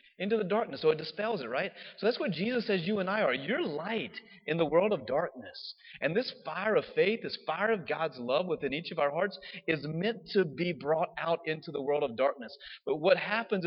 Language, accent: English, American